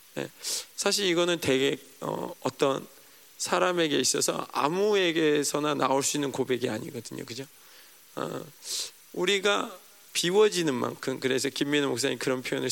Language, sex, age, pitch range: Korean, male, 40-59, 130-175 Hz